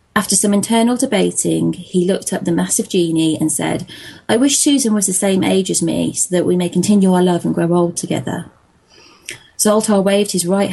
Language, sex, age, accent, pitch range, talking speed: English, female, 20-39, British, 155-185 Hz, 200 wpm